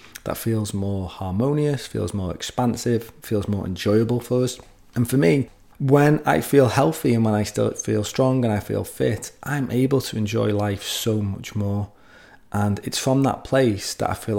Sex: male